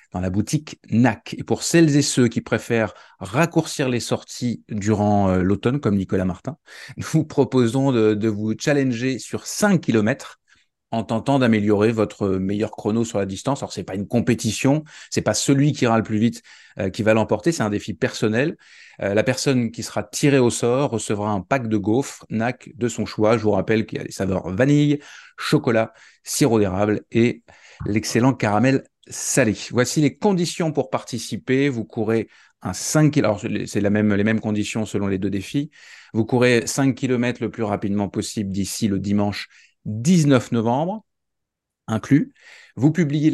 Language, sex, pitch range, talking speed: French, male, 105-125 Hz, 180 wpm